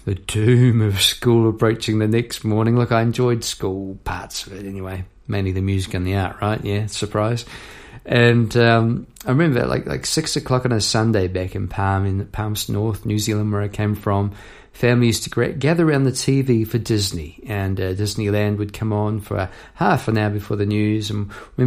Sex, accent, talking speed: male, British, 210 wpm